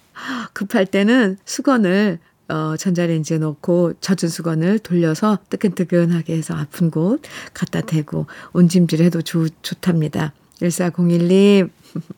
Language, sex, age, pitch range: Korean, female, 50-69, 175-255 Hz